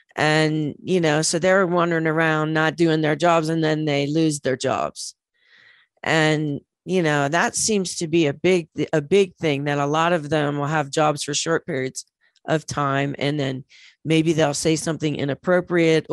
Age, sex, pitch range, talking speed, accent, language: 40-59, female, 150-180 Hz, 180 wpm, American, English